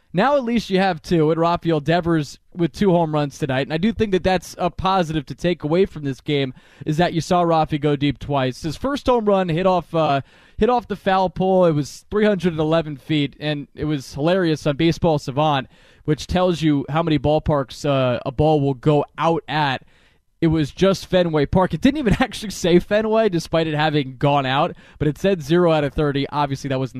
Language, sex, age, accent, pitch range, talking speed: English, male, 20-39, American, 135-170 Hz, 220 wpm